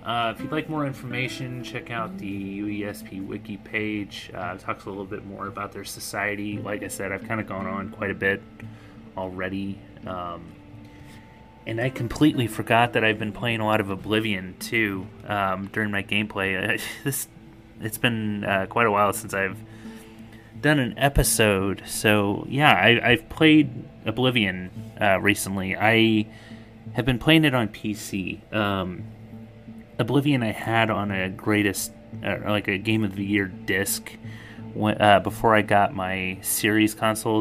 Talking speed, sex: 165 wpm, male